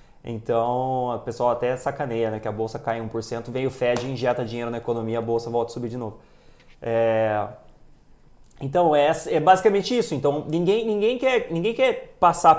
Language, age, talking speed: English, 20-39, 180 wpm